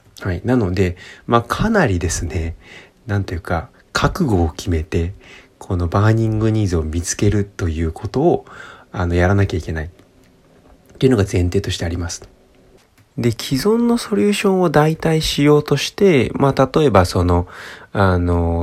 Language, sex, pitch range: Japanese, male, 90-135 Hz